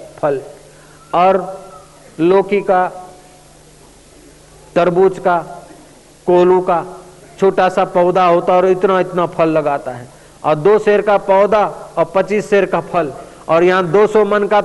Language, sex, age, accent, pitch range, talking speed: Hindi, male, 50-69, native, 165-205 Hz, 140 wpm